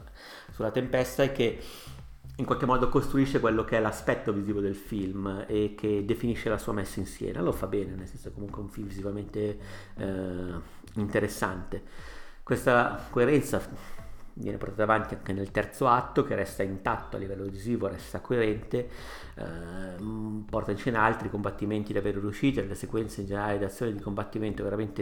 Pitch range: 100-115 Hz